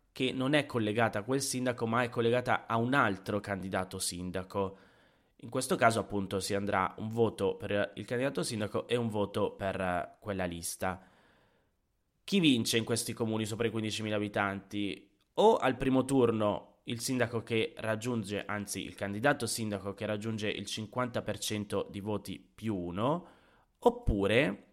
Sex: male